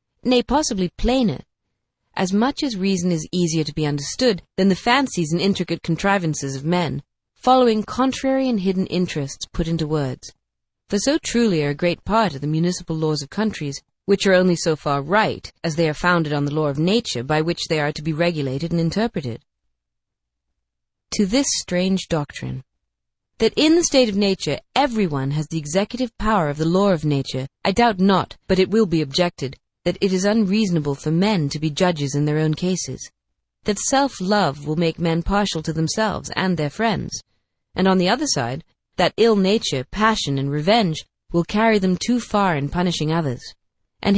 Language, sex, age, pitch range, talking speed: English, female, 30-49, 145-210 Hz, 185 wpm